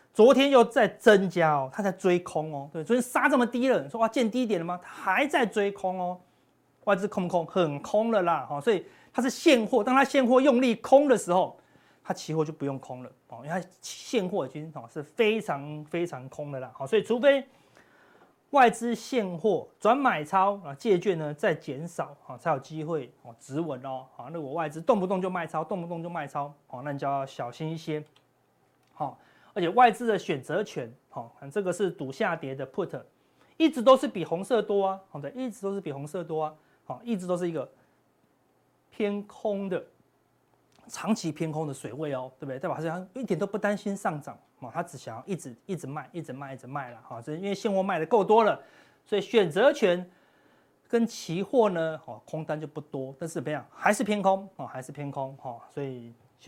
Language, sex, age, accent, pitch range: Chinese, male, 30-49, native, 145-210 Hz